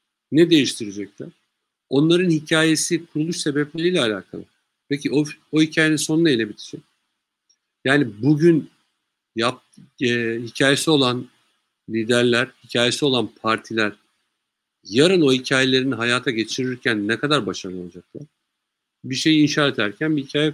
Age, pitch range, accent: 50-69, 120-160 Hz, native